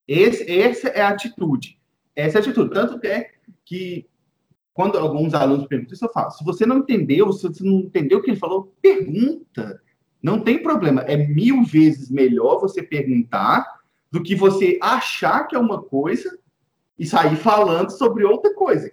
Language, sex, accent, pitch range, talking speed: English, male, Brazilian, 145-215 Hz, 175 wpm